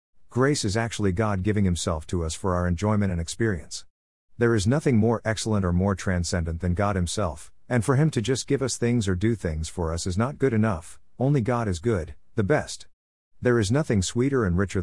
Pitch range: 90-115 Hz